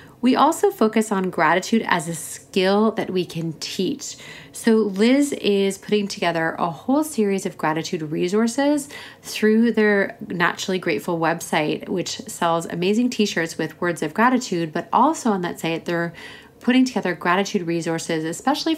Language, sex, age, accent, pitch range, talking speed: English, female, 30-49, American, 170-235 Hz, 150 wpm